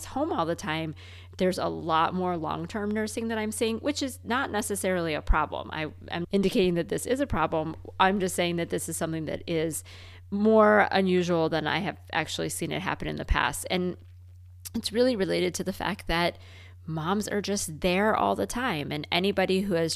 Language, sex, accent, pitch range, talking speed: English, female, American, 160-205 Hz, 200 wpm